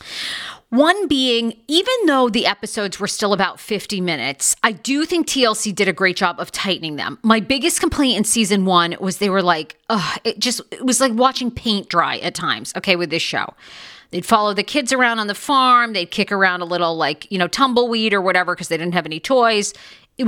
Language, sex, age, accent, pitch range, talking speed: English, female, 40-59, American, 180-245 Hz, 215 wpm